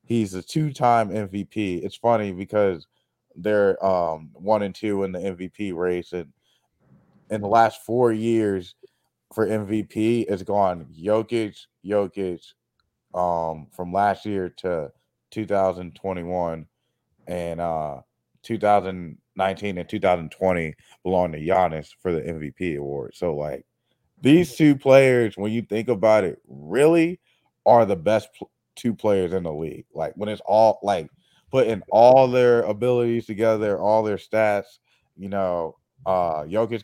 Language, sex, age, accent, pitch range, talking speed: English, male, 20-39, American, 90-110 Hz, 135 wpm